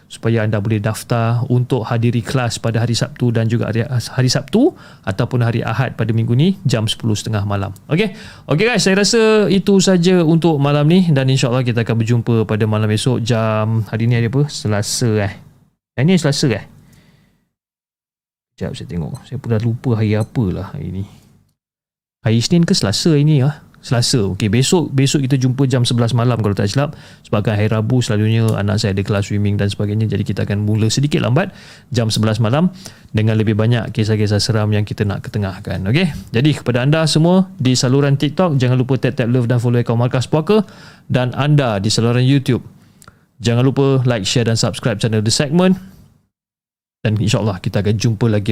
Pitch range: 110-140 Hz